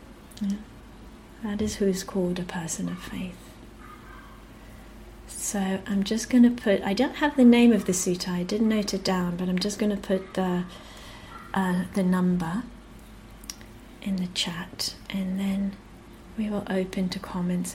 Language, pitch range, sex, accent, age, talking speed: English, 180-210 Hz, female, British, 40-59, 160 wpm